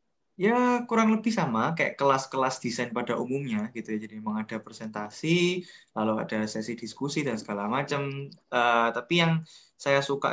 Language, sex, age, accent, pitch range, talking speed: Indonesian, male, 20-39, native, 115-145 Hz, 155 wpm